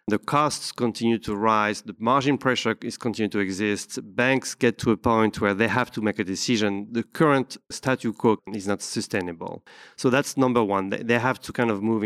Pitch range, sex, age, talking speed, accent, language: 110-135 Hz, male, 30-49, 205 wpm, French, English